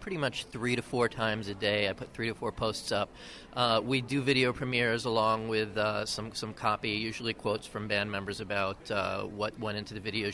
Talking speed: 220 wpm